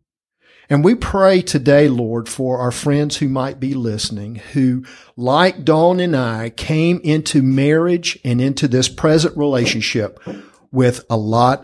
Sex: male